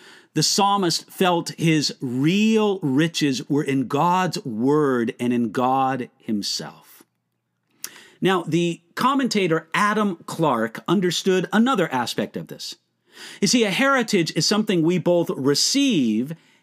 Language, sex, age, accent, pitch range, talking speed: English, male, 50-69, American, 150-210 Hz, 120 wpm